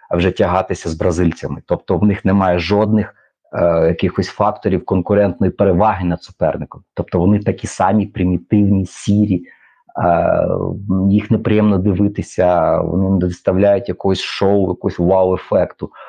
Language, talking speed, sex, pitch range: Ukrainian, 130 wpm, male, 90-105 Hz